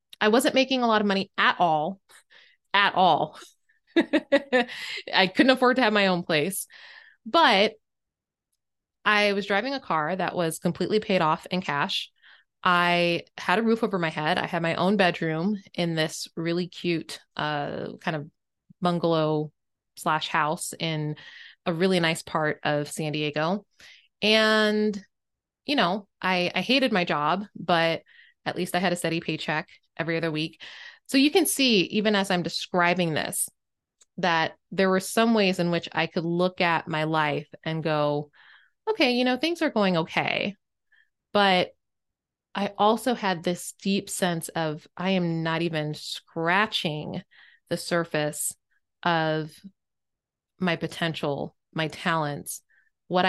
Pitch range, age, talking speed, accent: 160-210 Hz, 20-39, 150 wpm, American